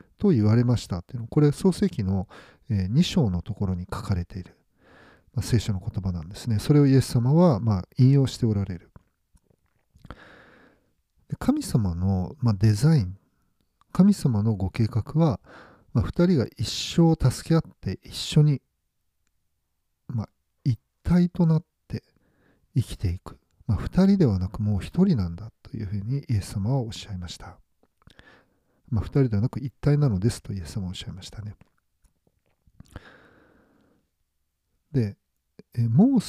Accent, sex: native, male